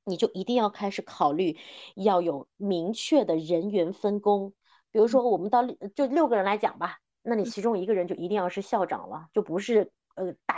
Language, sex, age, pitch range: Chinese, female, 30-49, 190-260 Hz